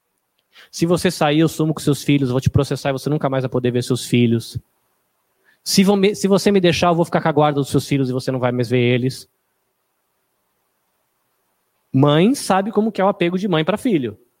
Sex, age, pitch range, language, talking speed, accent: male, 20-39, 145-205 Hz, Portuguese, 230 wpm, Brazilian